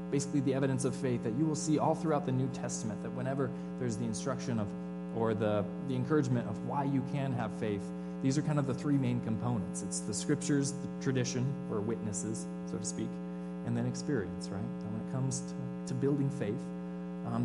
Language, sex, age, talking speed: English, male, 20-39, 210 wpm